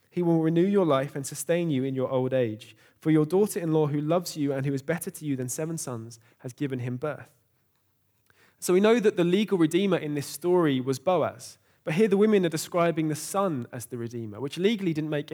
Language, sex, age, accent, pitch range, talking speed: English, male, 20-39, British, 130-160 Hz, 225 wpm